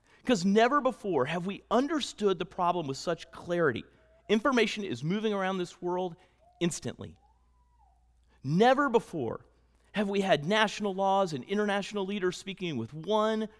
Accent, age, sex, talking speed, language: American, 40-59, male, 135 wpm, English